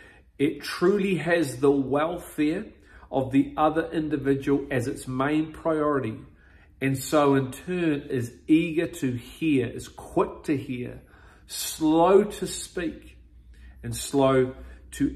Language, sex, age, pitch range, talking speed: English, male, 40-59, 125-155 Hz, 125 wpm